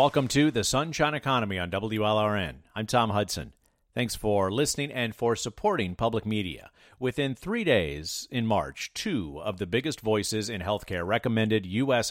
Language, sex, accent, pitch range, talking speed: English, male, American, 100-130 Hz, 160 wpm